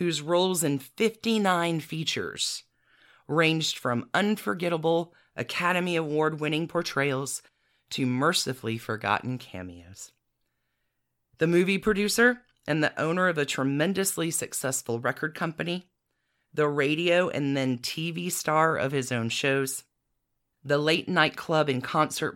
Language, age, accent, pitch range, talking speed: English, 40-59, American, 135-180 Hz, 115 wpm